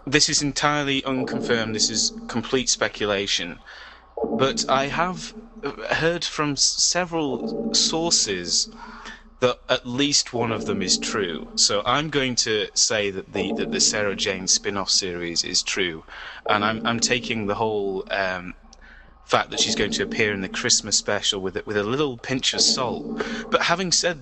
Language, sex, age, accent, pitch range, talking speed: English, male, 20-39, British, 105-145 Hz, 165 wpm